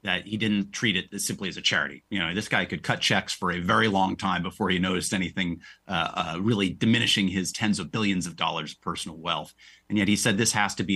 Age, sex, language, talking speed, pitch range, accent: 30-49, male, English, 250 wpm, 90-110 Hz, American